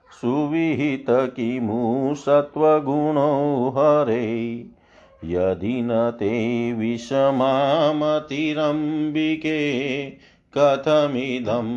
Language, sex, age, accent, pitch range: Hindi, male, 50-69, native, 120-150 Hz